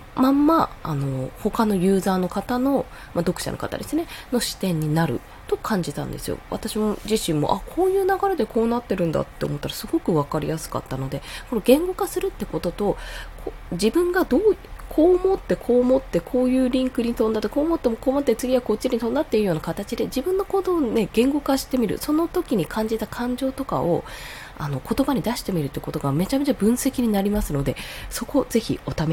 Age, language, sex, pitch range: 20-39, Japanese, female, 155-250 Hz